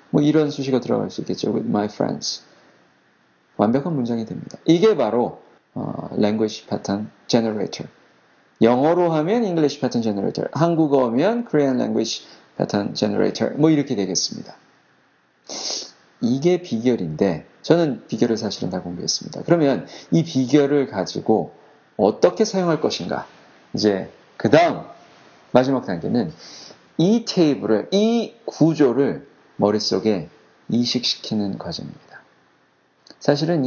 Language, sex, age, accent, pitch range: Korean, male, 40-59, native, 115-160 Hz